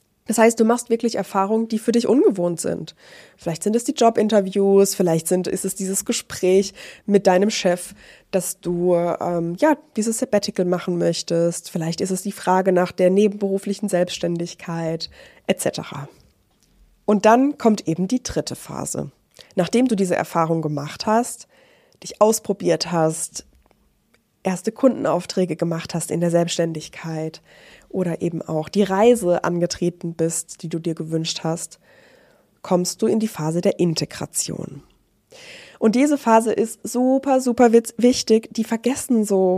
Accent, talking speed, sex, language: German, 145 wpm, female, German